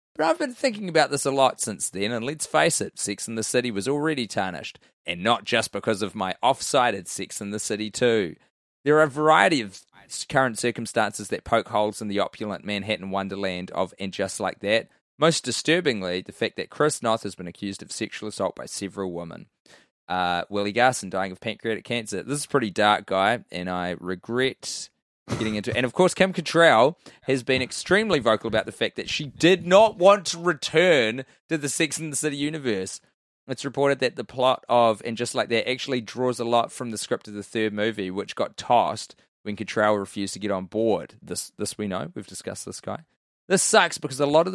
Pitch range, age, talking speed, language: 100-135 Hz, 20-39, 215 wpm, English